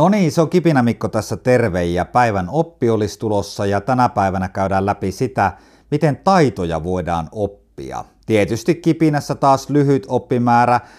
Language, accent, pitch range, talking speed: Finnish, native, 105-145 Hz, 140 wpm